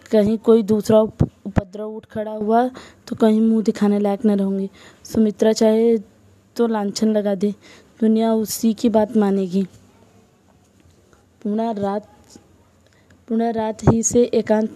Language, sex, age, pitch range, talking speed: Hindi, female, 20-39, 205-225 Hz, 135 wpm